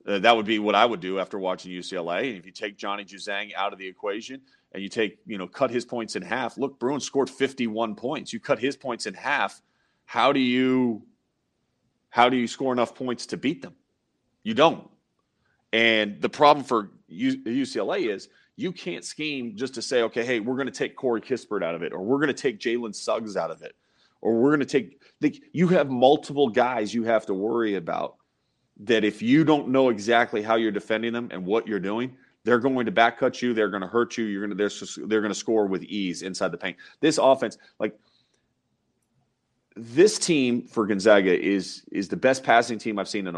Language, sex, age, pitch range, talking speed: English, male, 30-49, 100-130 Hz, 215 wpm